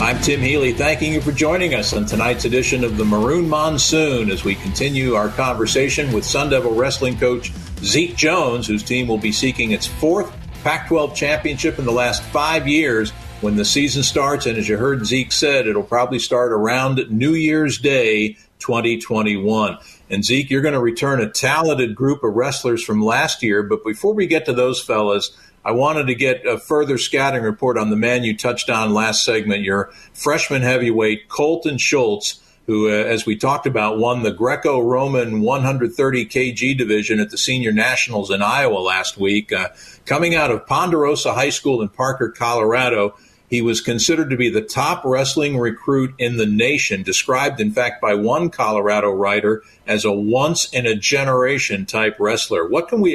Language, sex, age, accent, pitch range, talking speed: English, male, 50-69, American, 110-135 Hz, 180 wpm